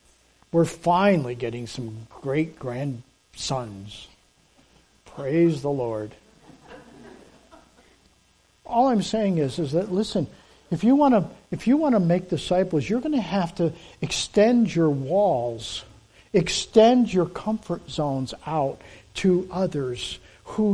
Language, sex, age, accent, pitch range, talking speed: English, male, 50-69, American, 140-210 Hz, 120 wpm